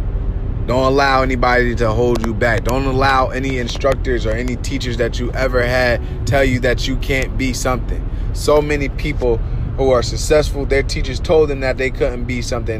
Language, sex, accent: English, male, American